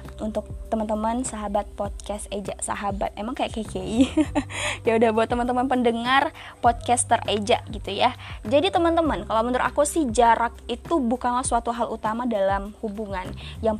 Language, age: Indonesian, 20-39